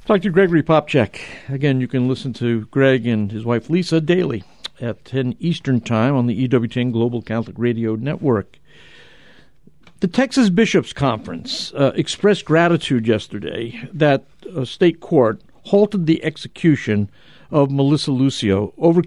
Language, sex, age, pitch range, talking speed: English, male, 50-69, 115-160 Hz, 140 wpm